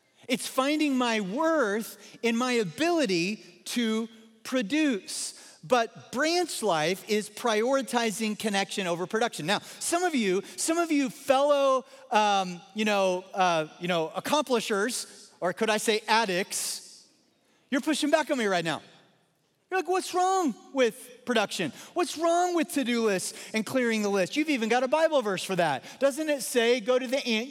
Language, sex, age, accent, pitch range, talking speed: English, male, 40-59, American, 200-270 Hz, 160 wpm